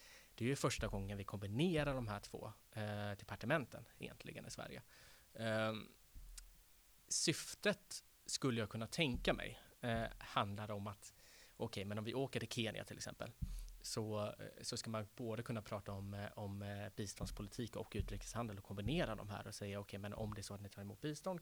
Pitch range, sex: 105-115 Hz, male